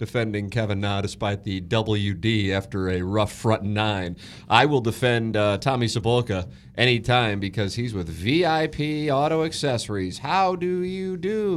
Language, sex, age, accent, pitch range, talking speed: English, male, 40-59, American, 100-150 Hz, 140 wpm